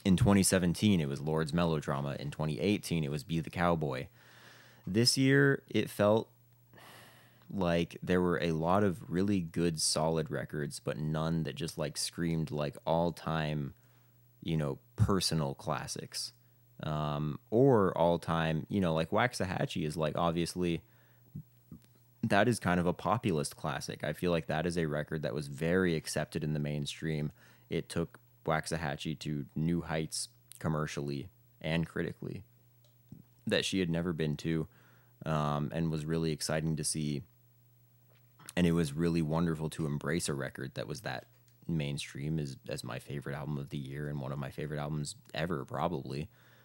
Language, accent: English, American